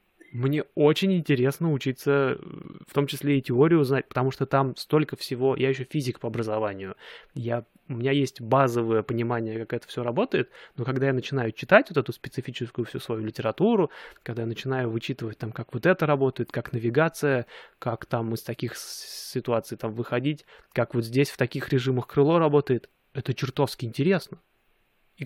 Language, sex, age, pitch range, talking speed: Russian, male, 20-39, 120-140 Hz, 170 wpm